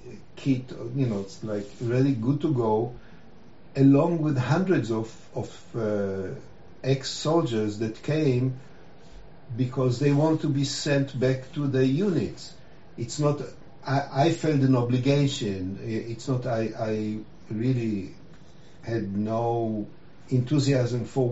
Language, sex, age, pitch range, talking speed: English, male, 50-69, 115-140 Hz, 125 wpm